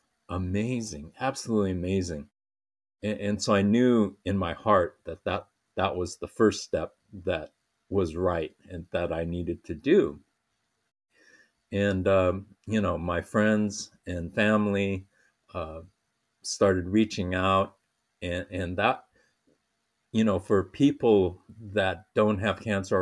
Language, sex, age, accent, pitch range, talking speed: English, male, 50-69, American, 90-110 Hz, 130 wpm